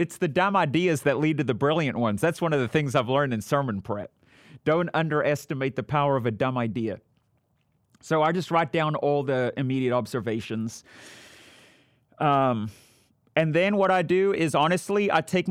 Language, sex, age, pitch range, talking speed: English, male, 30-49, 115-145 Hz, 180 wpm